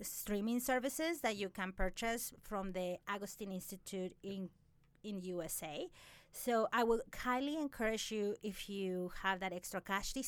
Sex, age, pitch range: female, 30-49, 185-235 Hz